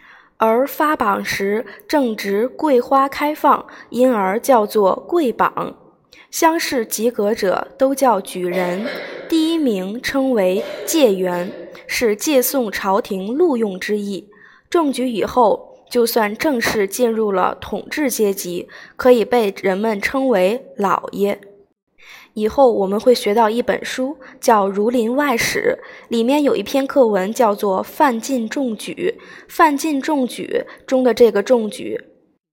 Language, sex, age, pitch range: Chinese, female, 20-39, 205-290 Hz